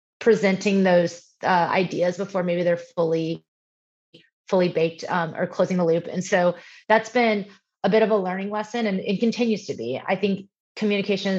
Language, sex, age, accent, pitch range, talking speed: English, female, 20-39, American, 170-195 Hz, 175 wpm